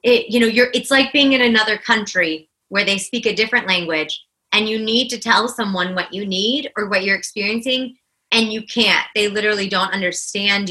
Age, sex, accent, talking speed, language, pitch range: 30-49, female, American, 190 wpm, English, 180-225 Hz